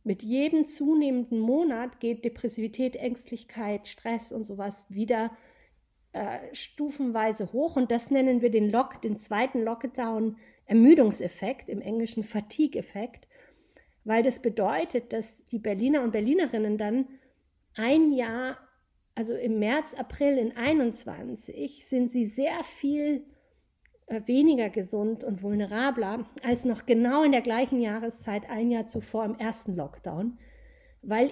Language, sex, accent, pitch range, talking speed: German, female, German, 215-255 Hz, 125 wpm